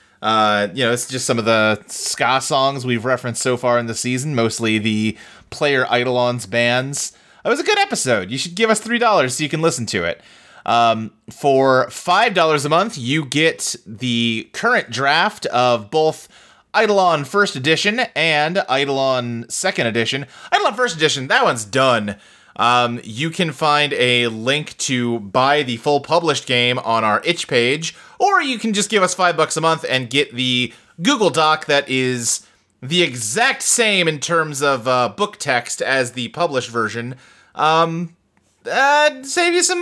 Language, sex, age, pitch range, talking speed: English, male, 30-49, 120-180 Hz, 170 wpm